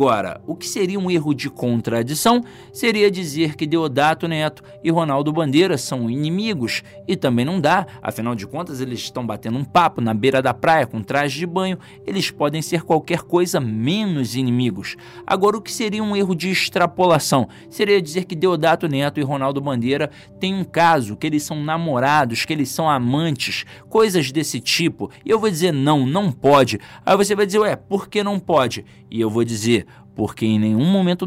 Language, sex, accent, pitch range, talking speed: English, male, Brazilian, 125-185 Hz, 190 wpm